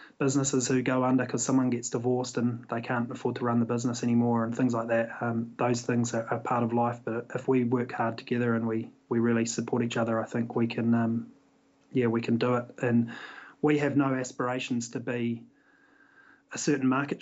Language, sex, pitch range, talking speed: English, male, 115-130 Hz, 215 wpm